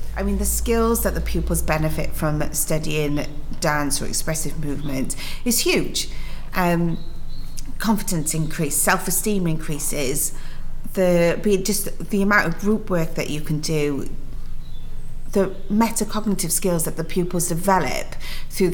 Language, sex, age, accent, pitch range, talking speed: English, female, 40-59, British, 150-180 Hz, 130 wpm